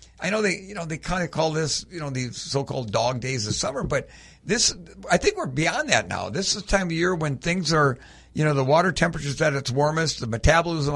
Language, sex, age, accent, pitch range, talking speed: English, male, 60-79, American, 135-170 Hz, 250 wpm